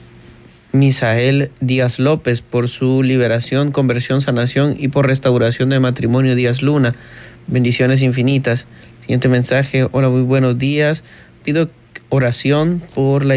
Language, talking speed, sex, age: Spanish, 120 wpm, male, 30-49